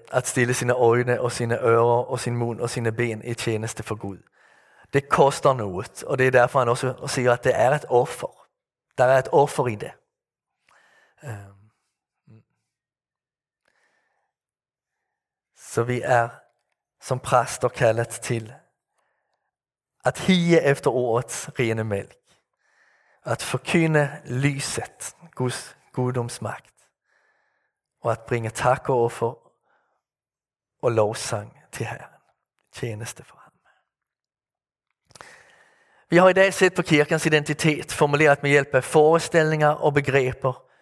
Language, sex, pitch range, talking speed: Danish, male, 120-155 Hz, 125 wpm